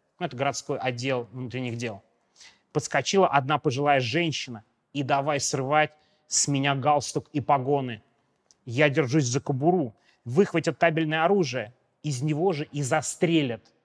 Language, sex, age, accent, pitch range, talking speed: Russian, male, 30-49, native, 135-160 Hz, 125 wpm